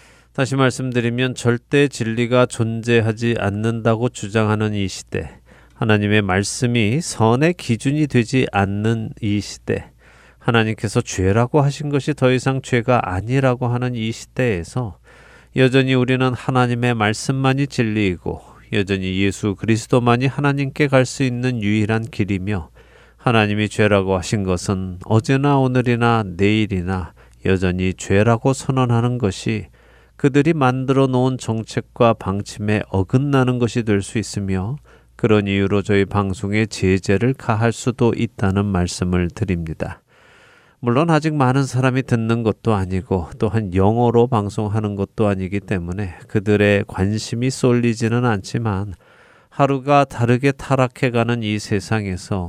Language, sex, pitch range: Korean, male, 100-125 Hz